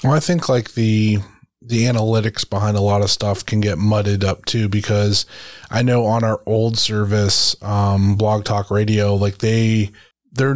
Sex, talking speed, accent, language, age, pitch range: male, 175 wpm, American, English, 20-39, 100-110 Hz